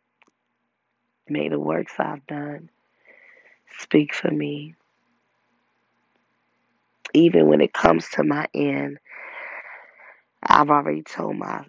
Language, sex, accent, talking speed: English, female, American, 100 wpm